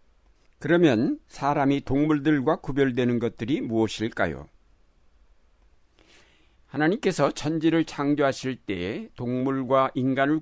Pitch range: 110-155 Hz